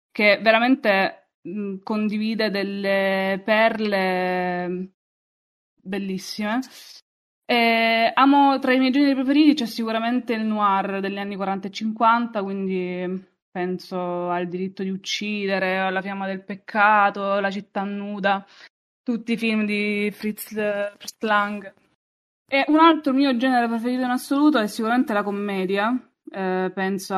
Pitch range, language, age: 195-230 Hz, Italian, 20-39